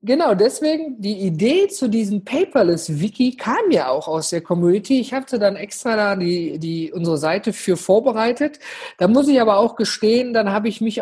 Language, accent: German, German